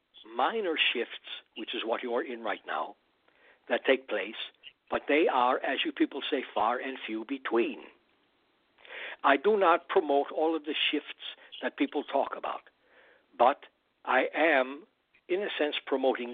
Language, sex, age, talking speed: English, male, 60-79, 160 wpm